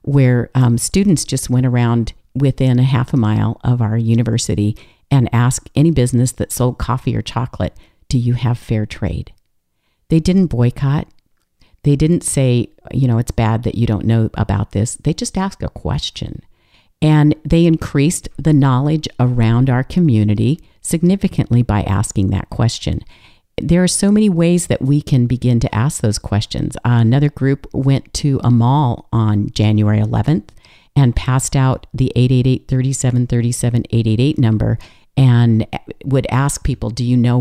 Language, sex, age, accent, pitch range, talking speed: English, female, 50-69, American, 115-140 Hz, 155 wpm